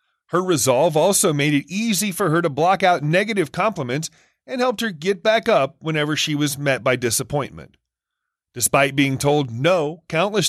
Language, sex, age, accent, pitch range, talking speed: English, male, 30-49, American, 155-210 Hz, 170 wpm